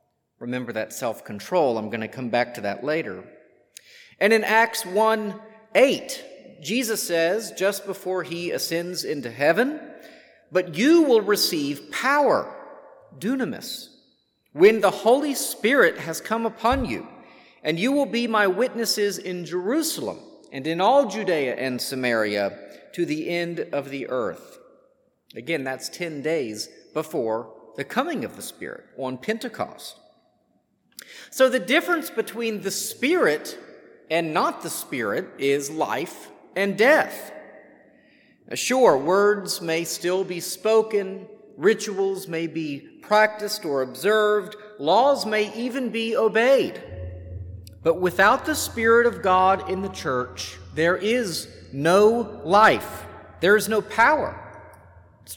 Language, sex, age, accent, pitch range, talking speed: English, male, 40-59, American, 150-230 Hz, 130 wpm